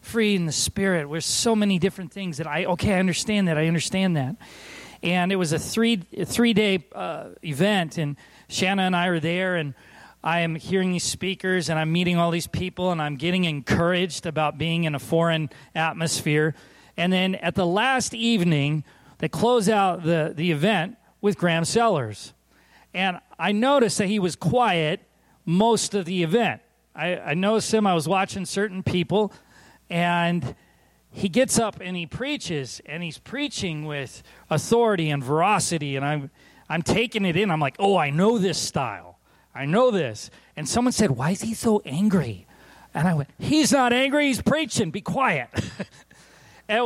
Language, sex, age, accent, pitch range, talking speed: English, male, 40-59, American, 160-205 Hz, 175 wpm